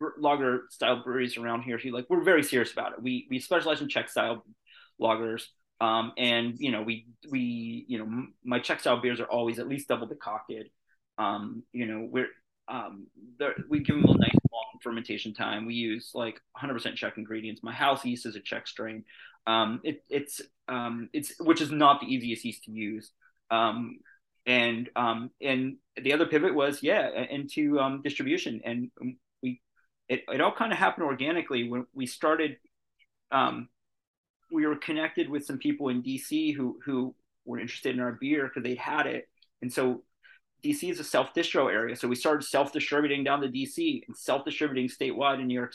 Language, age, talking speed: English, 30-49, 185 wpm